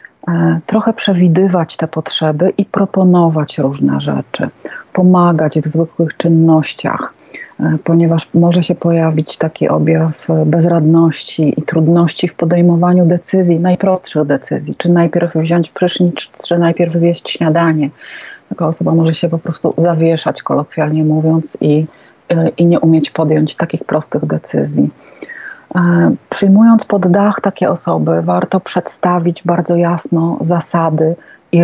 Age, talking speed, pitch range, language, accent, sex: 40-59, 120 wpm, 155-175 Hz, Polish, native, female